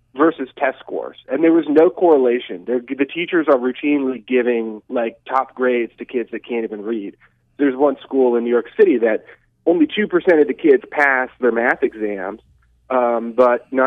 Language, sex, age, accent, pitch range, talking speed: English, male, 30-49, American, 115-145 Hz, 175 wpm